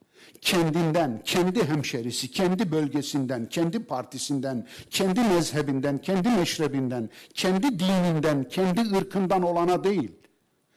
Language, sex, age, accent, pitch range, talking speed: Turkish, male, 60-79, native, 125-180 Hz, 95 wpm